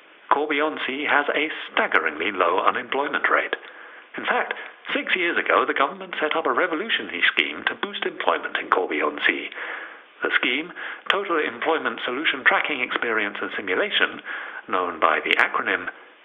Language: English